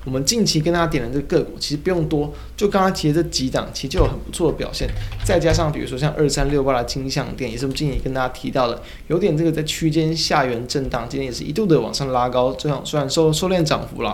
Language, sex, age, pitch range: Chinese, male, 20-39, 130-160 Hz